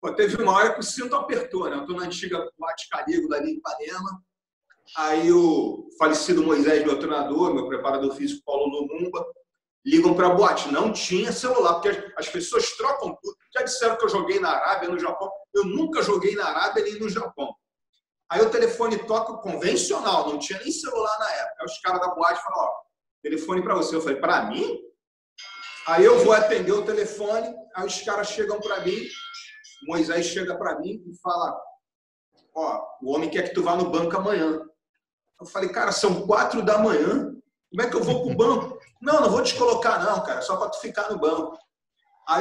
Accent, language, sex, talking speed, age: Brazilian, Portuguese, male, 195 wpm, 40-59